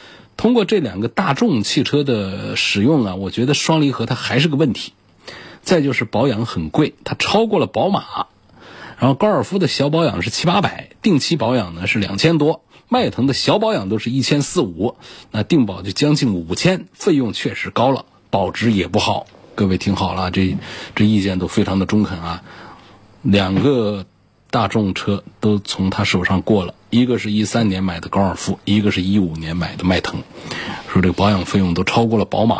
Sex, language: male, Chinese